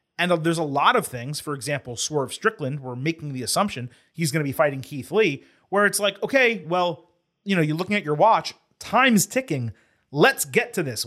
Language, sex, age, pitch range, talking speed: English, male, 30-49, 130-180 Hz, 210 wpm